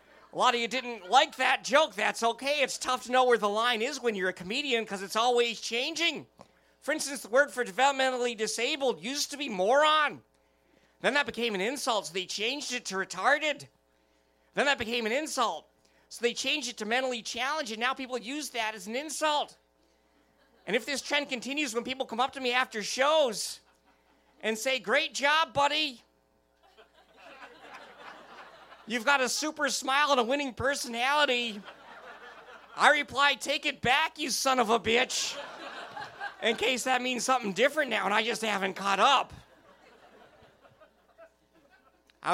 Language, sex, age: English, male, 40-59